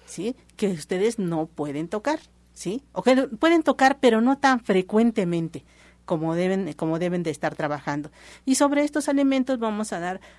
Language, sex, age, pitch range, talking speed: Spanish, female, 50-69, 165-225 Hz, 170 wpm